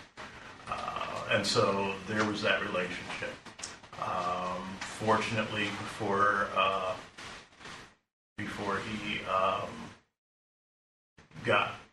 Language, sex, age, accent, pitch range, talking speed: English, male, 40-59, American, 95-105 Hz, 75 wpm